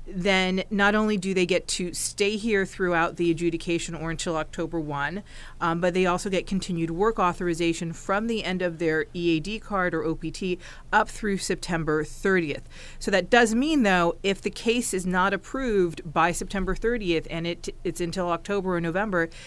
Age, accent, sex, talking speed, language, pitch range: 40-59, American, female, 175 wpm, English, 155-190 Hz